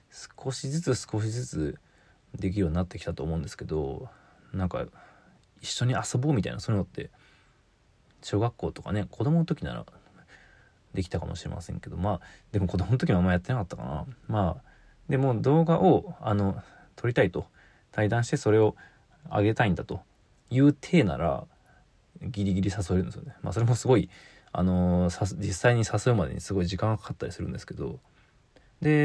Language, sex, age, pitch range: Japanese, male, 20-39, 95-125 Hz